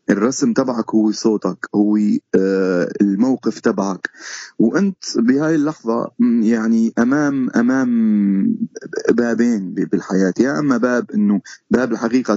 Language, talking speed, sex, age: Arabic, 100 wpm, male, 30-49